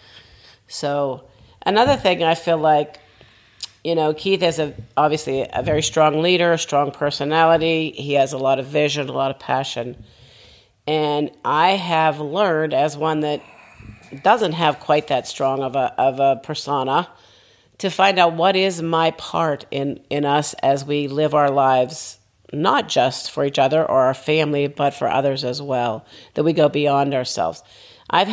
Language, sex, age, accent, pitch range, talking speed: English, female, 50-69, American, 135-160 Hz, 170 wpm